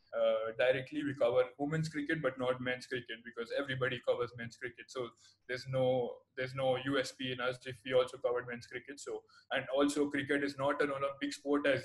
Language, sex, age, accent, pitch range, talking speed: English, male, 20-39, Indian, 125-150 Hz, 200 wpm